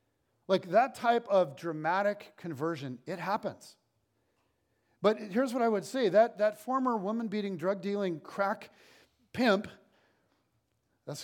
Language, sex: English, male